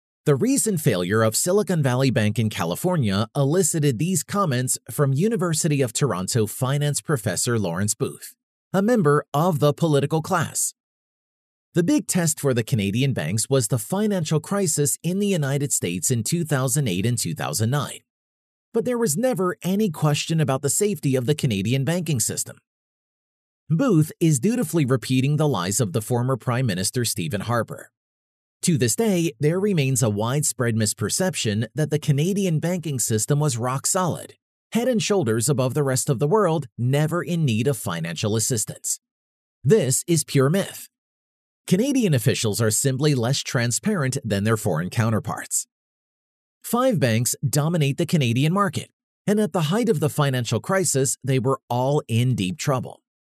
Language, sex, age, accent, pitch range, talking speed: English, male, 30-49, American, 120-170 Hz, 155 wpm